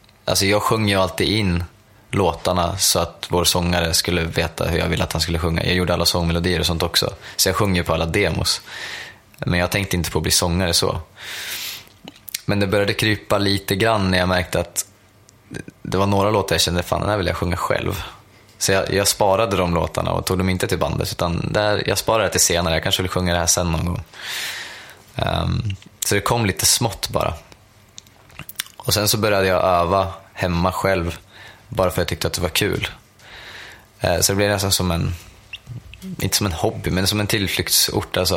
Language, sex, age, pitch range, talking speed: Swedish, male, 20-39, 85-105 Hz, 210 wpm